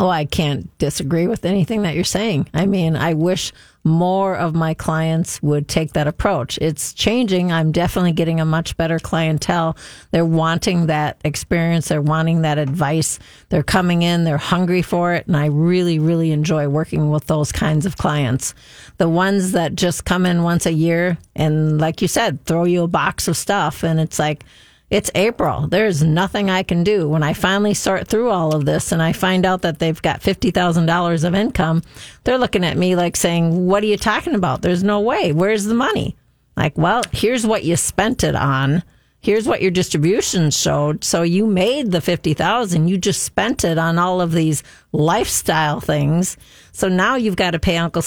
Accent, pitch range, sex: American, 160-190 Hz, female